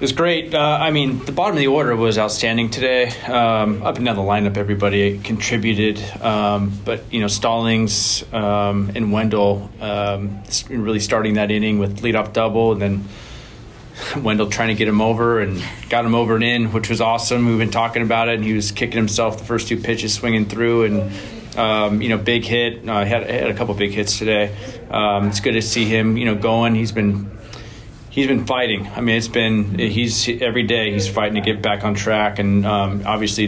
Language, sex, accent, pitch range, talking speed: English, male, American, 105-115 Hz, 210 wpm